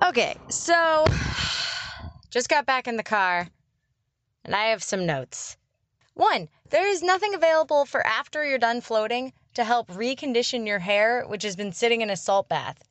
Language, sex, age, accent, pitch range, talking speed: English, female, 20-39, American, 200-310 Hz, 165 wpm